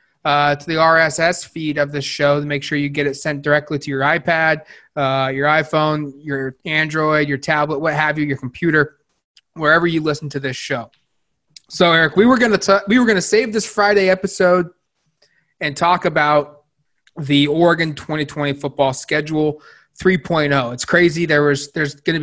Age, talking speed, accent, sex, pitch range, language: 20-39, 175 wpm, American, male, 145-170 Hz, English